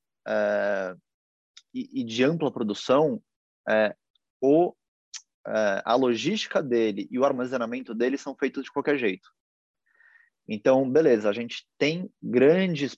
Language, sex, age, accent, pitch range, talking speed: Portuguese, male, 20-39, Brazilian, 115-160 Hz, 125 wpm